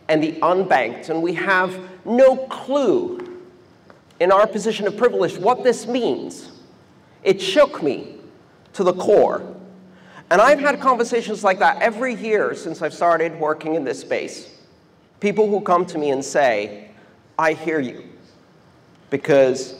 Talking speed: 145 wpm